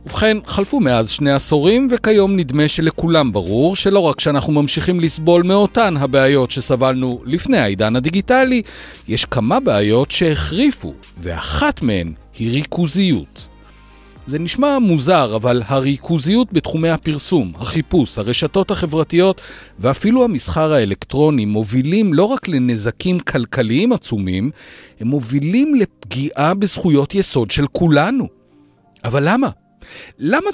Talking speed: 110 wpm